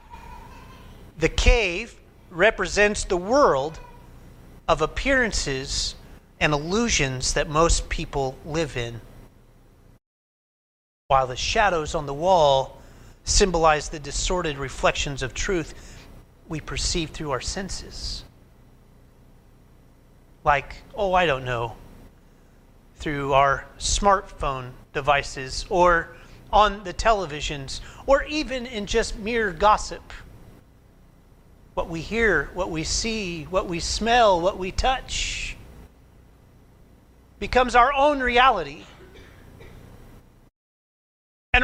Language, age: English, 30-49